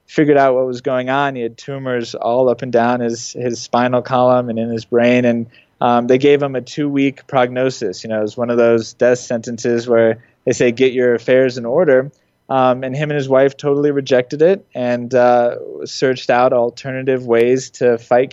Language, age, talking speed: English, 20-39, 205 wpm